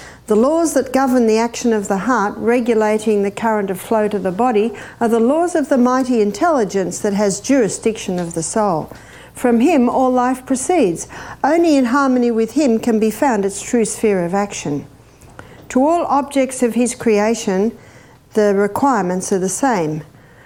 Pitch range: 200-260 Hz